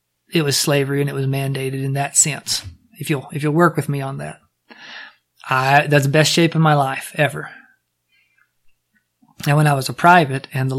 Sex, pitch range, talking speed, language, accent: male, 140-165 Hz, 200 wpm, English, American